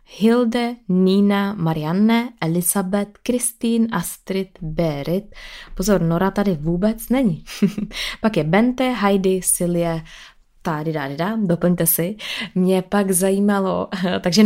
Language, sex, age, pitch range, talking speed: Czech, female, 20-39, 175-215 Hz, 105 wpm